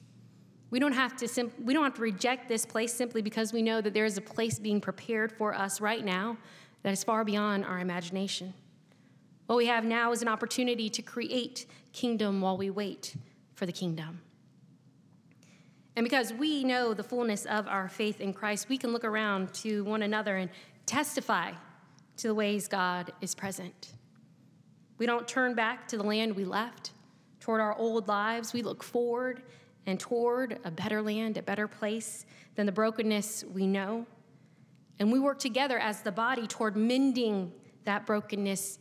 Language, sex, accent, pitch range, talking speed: English, female, American, 185-225 Hz, 180 wpm